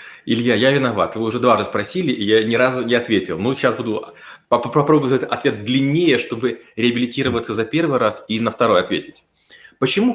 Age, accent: 30-49, native